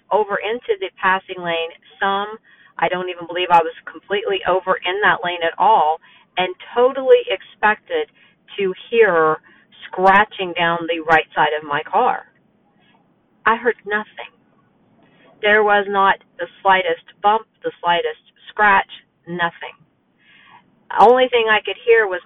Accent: American